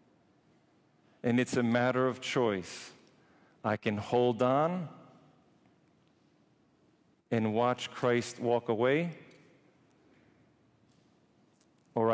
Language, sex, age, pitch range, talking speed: English, male, 50-69, 110-125 Hz, 80 wpm